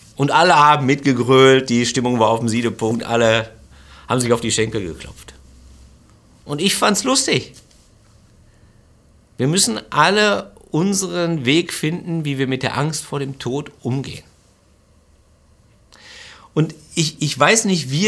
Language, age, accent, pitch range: German, 50-69, German, 110-150 Hz